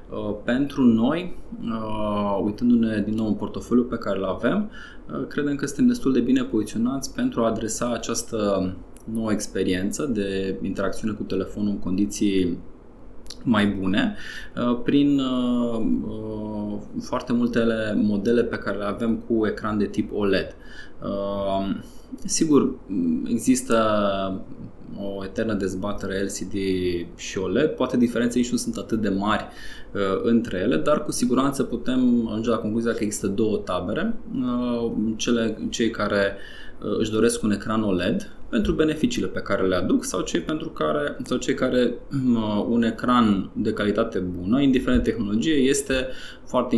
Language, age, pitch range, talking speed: Romanian, 20-39, 100-125 Hz, 130 wpm